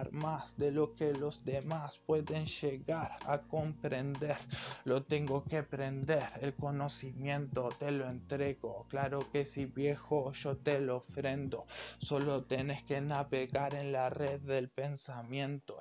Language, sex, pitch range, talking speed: Spanish, male, 130-145 Hz, 135 wpm